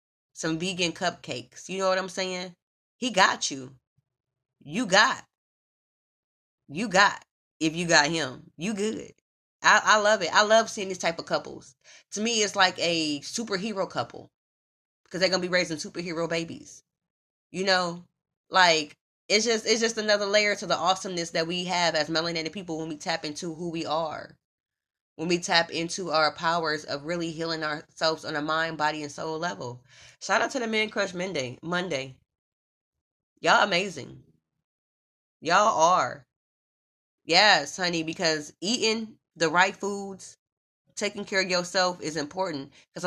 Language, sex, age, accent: English, female, 20-39, American